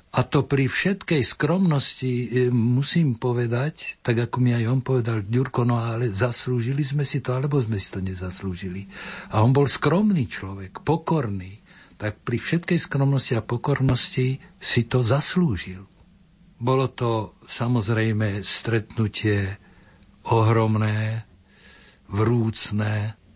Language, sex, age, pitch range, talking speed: Slovak, male, 60-79, 110-140 Hz, 120 wpm